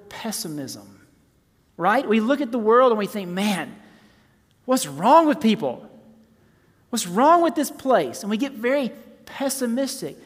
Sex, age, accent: male, 40-59, American